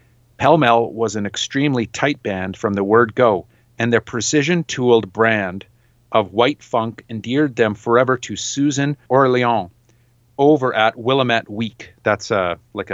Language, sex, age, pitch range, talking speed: English, male, 40-59, 110-130 Hz, 140 wpm